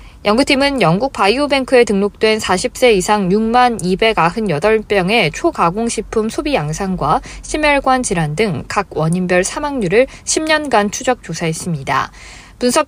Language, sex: Korean, female